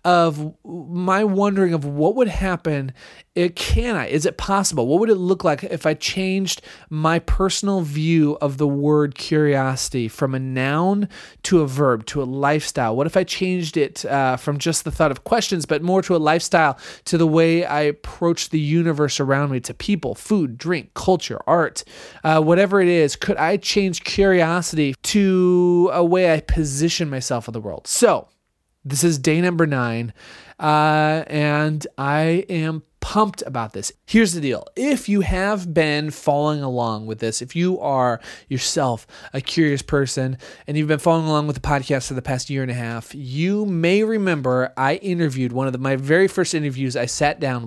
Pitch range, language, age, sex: 140-175 Hz, English, 30-49, male